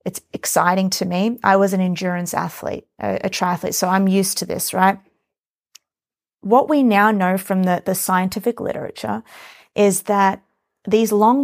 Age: 30-49